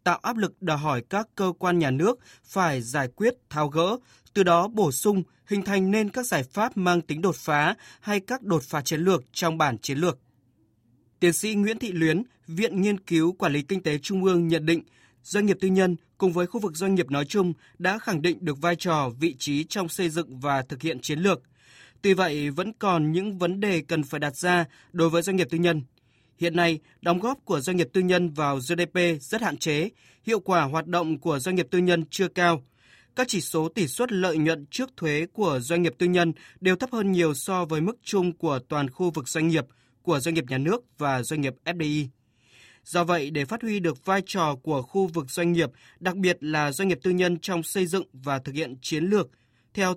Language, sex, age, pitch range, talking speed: Vietnamese, male, 20-39, 150-190 Hz, 230 wpm